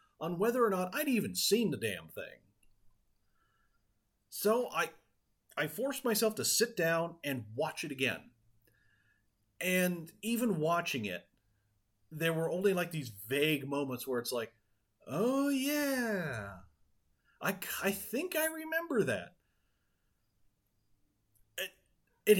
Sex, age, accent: male, 40-59, American